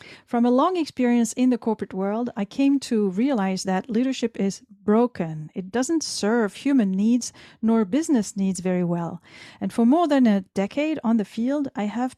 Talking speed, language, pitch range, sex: 180 wpm, English, 195-255 Hz, female